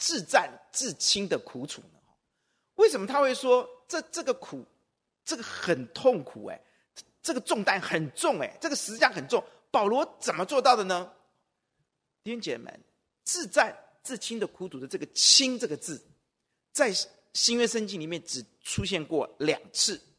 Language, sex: Chinese, male